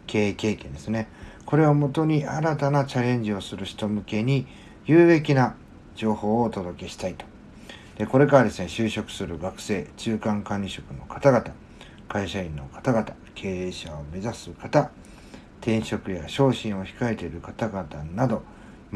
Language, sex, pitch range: Japanese, male, 95-135 Hz